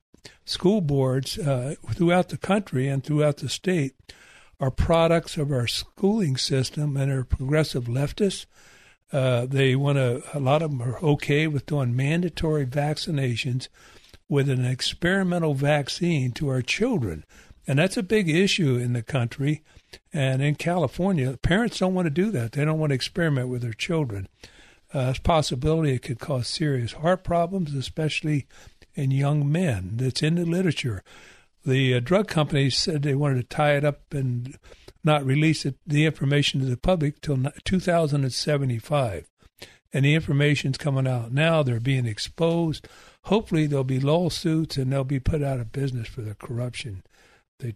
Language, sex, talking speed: English, male, 160 wpm